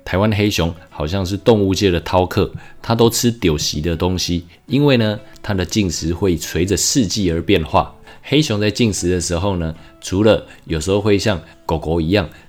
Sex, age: male, 20-39